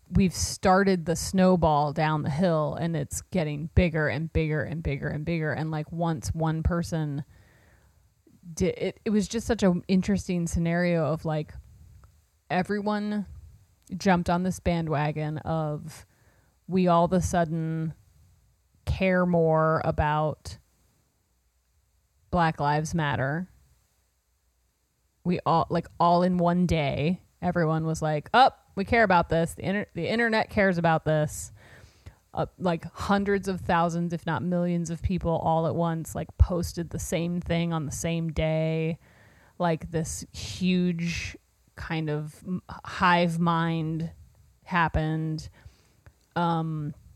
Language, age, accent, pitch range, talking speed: English, 30-49, American, 145-175 Hz, 130 wpm